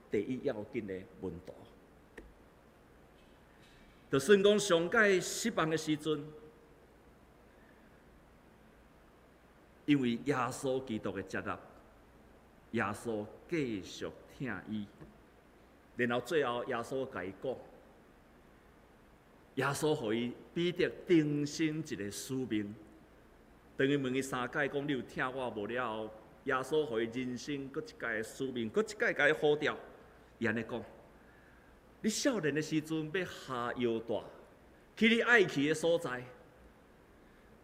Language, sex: Chinese, male